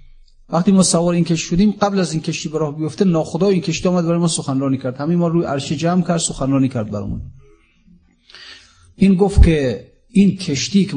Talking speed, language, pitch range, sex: 195 wpm, Persian, 130-195 Hz, male